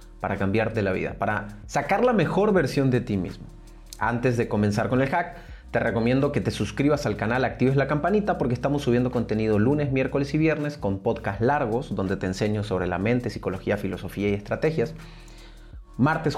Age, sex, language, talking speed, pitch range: 30-49, male, Spanish, 185 wpm, 115-165 Hz